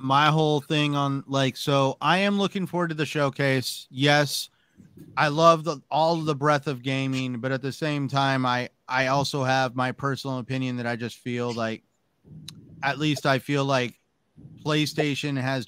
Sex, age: male, 30-49